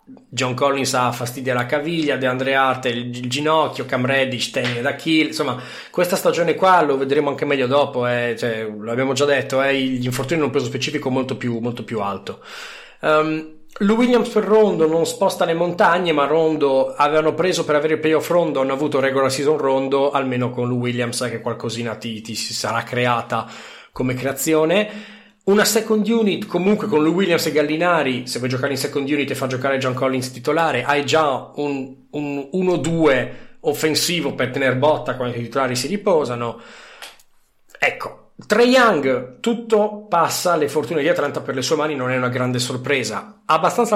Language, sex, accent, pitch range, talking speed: Italian, male, native, 130-170 Hz, 175 wpm